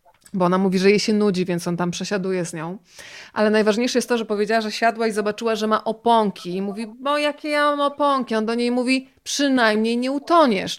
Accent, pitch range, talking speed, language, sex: native, 205-240 Hz, 225 wpm, Polish, female